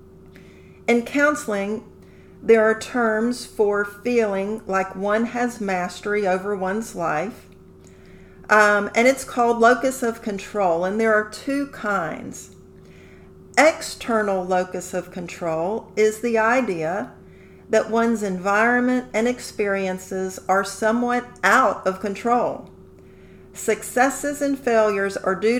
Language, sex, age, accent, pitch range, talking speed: English, female, 50-69, American, 185-230 Hz, 115 wpm